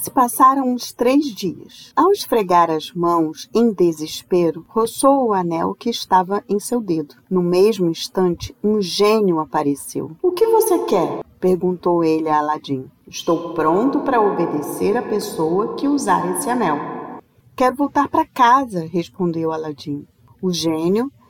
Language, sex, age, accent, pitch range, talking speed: Portuguese, female, 40-59, Brazilian, 170-225 Hz, 145 wpm